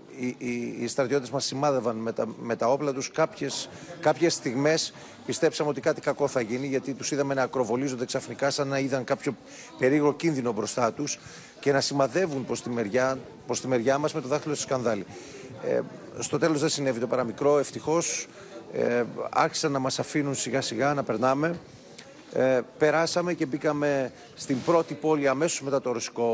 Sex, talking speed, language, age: male, 180 wpm, Greek, 40-59